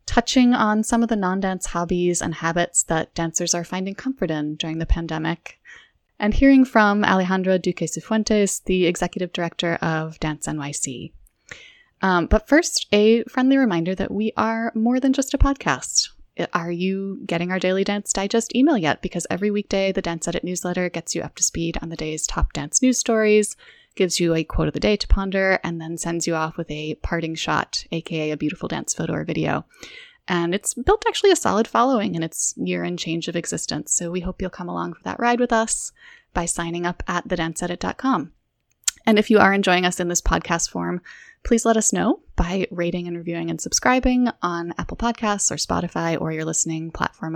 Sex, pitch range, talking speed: female, 170-225 Hz, 200 wpm